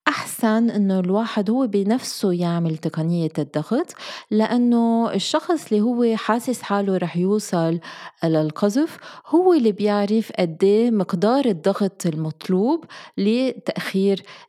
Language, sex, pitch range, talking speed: Arabic, female, 165-215 Hz, 105 wpm